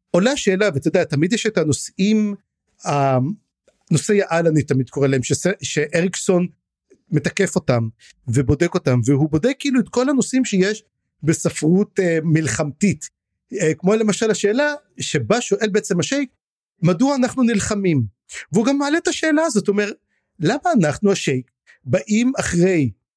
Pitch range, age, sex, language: 160-245 Hz, 50-69, male, Hebrew